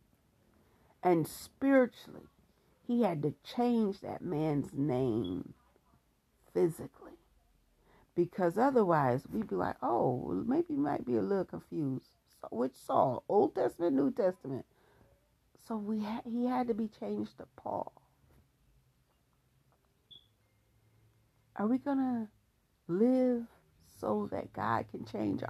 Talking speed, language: 120 wpm, English